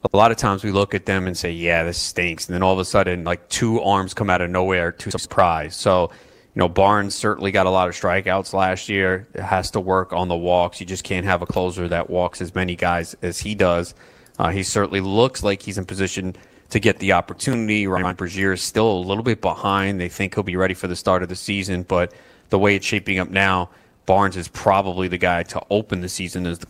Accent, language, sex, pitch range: American, English, male, 90-100 Hz